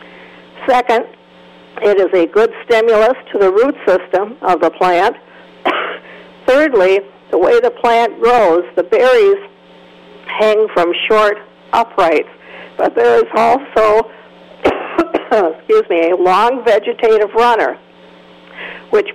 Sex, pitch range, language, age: female, 175-245 Hz, English, 50-69